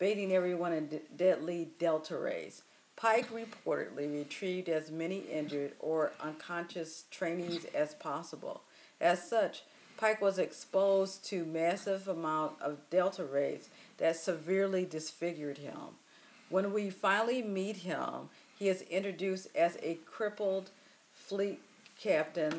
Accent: American